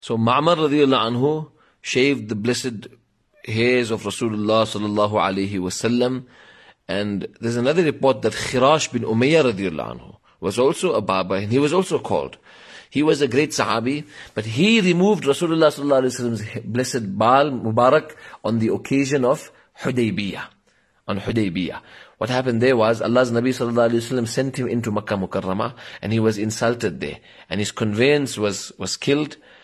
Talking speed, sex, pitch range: 170 wpm, male, 105-130 Hz